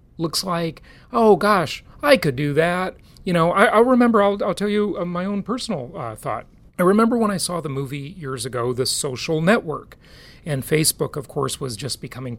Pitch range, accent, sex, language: 130-185 Hz, American, male, English